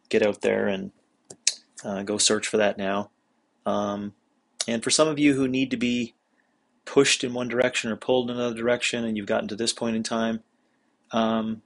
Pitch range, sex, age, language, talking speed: 105-125 Hz, male, 30-49, English, 195 wpm